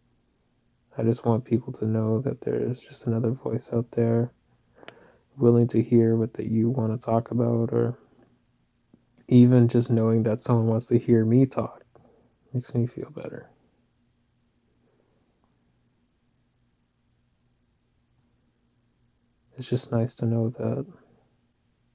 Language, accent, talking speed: English, American, 125 wpm